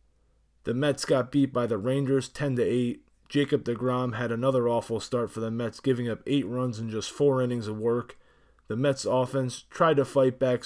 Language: English